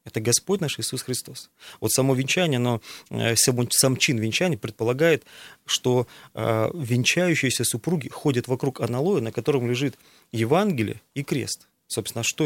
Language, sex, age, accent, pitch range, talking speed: Russian, male, 30-49, native, 115-135 Hz, 130 wpm